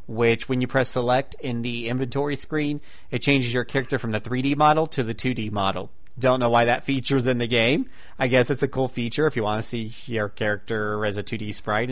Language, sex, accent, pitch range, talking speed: English, male, American, 115-140 Hz, 235 wpm